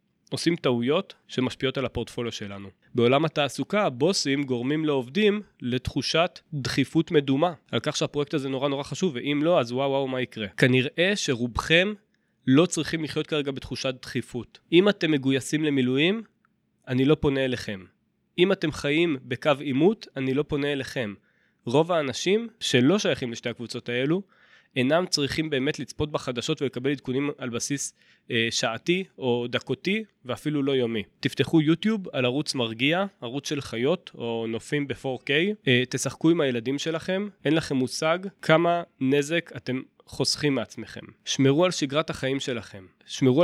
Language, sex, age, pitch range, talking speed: Hebrew, male, 20-39, 125-160 Hz, 145 wpm